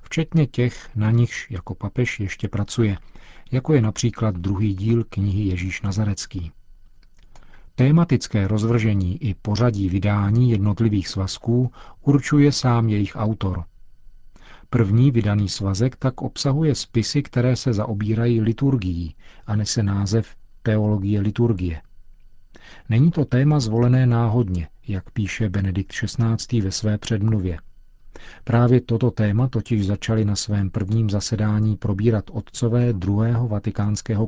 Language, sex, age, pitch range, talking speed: Czech, male, 40-59, 100-120 Hz, 115 wpm